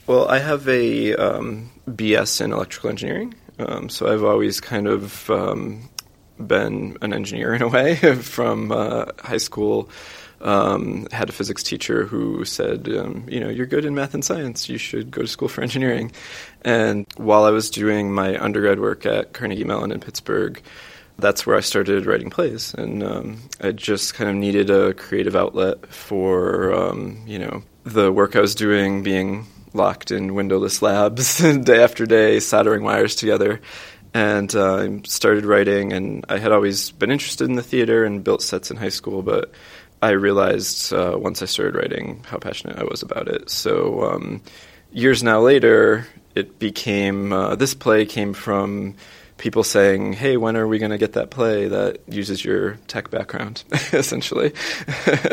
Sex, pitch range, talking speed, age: male, 100-130 Hz, 175 wpm, 20-39